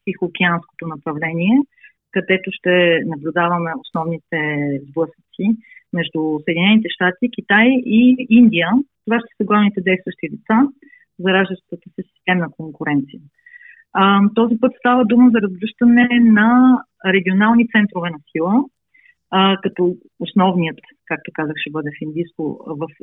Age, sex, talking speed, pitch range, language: 30-49, female, 115 wpm, 180-235 Hz, Bulgarian